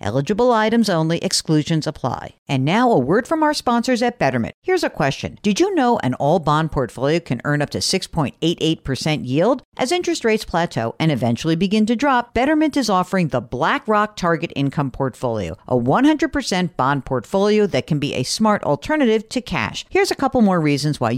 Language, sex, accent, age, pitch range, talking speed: English, female, American, 50-69, 140-220 Hz, 180 wpm